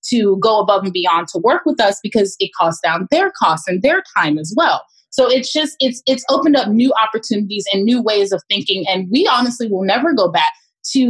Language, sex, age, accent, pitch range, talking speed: English, female, 20-39, American, 190-255 Hz, 225 wpm